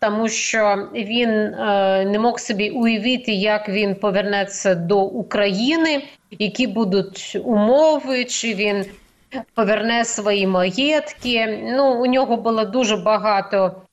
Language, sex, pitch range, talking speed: Ukrainian, female, 200-250 Hz, 115 wpm